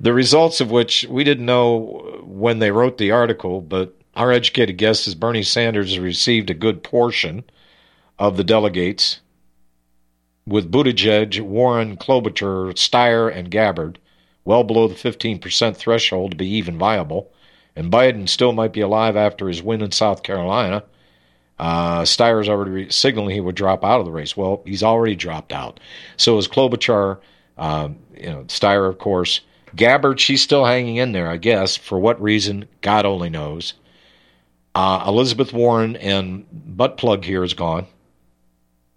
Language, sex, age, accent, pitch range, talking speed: English, male, 50-69, American, 85-115 Hz, 160 wpm